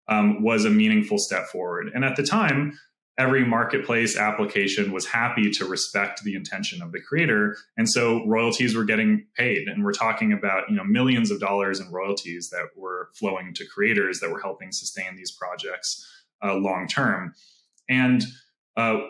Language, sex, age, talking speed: English, male, 20-39, 175 wpm